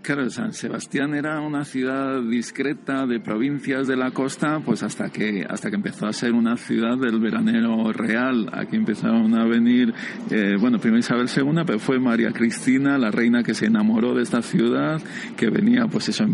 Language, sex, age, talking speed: Spanish, male, 50-69, 190 wpm